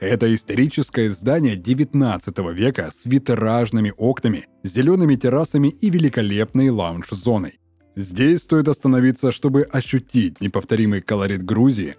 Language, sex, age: Russian, male, 20-39